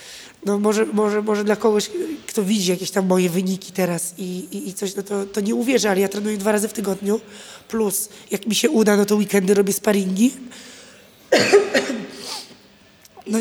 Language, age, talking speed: Polish, 20-39, 180 wpm